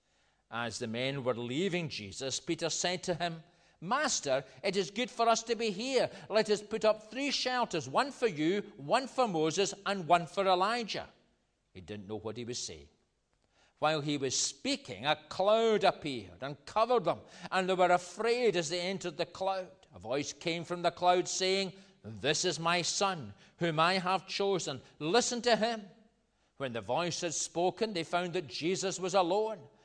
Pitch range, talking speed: 135-195 Hz, 180 wpm